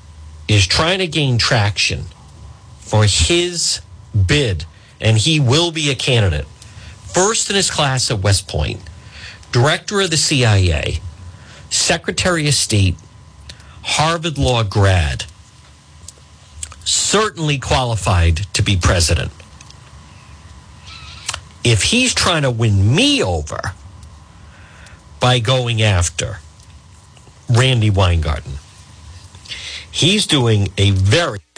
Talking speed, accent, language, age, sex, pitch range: 100 wpm, American, English, 50-69, male, 90-125 Hz